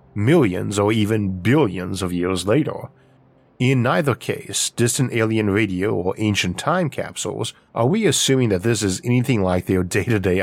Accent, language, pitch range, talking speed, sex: American, English, 95-125 Hz, 155 wpm, male